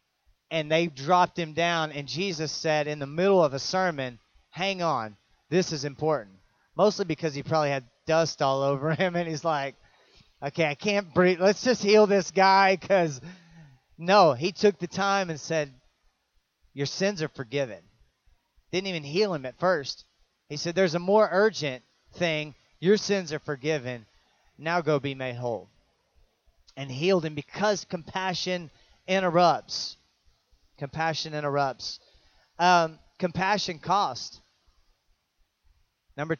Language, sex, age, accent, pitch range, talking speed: English, male, 30-49, American, 140-175 Hz, 140 wpm